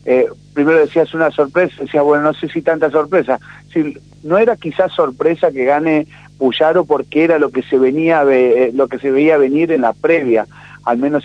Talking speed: 185 wpm